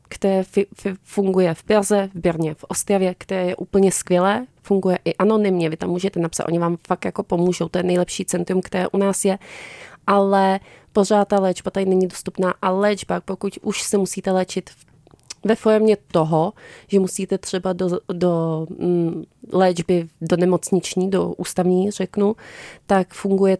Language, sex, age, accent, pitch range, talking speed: Czech, female, 30-49, native, 160-185 Hz, 165 wpm